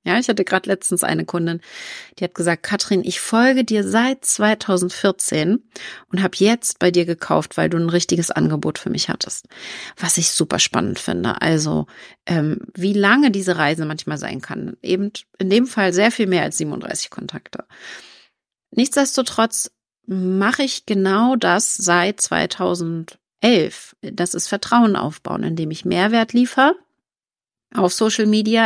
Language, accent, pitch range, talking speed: German, German, 180-225 Hz, 150 wpm